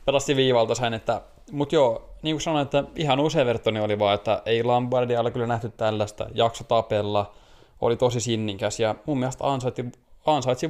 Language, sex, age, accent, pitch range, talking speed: Finnish, male, 20-39, native, 110-120 Hz, 170 wpm